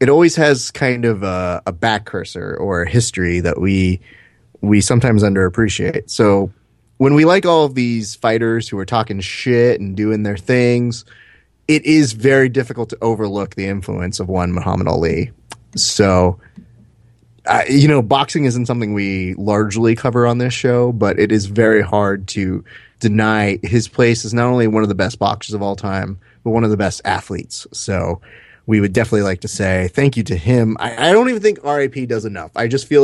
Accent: American